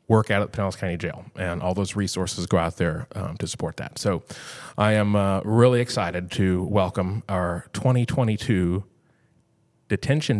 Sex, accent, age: male, American, 30-49